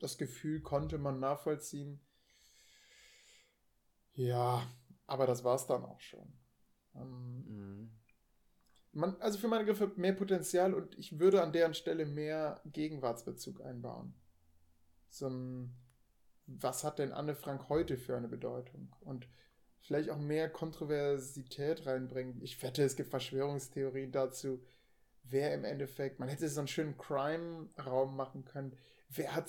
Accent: German